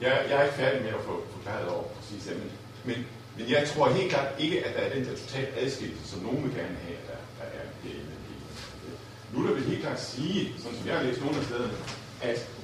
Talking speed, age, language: 240 wpm, 50-69, Danish